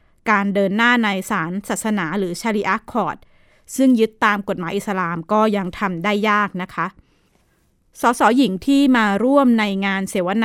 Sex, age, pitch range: female, 20-39, 195-240 Hz